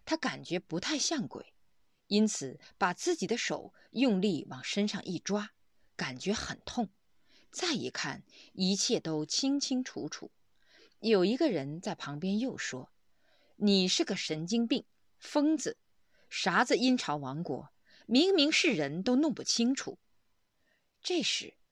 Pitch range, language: 180-260 Hz, Chinese